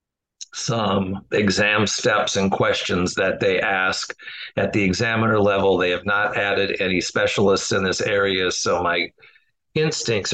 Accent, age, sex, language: American, 50-69, male, English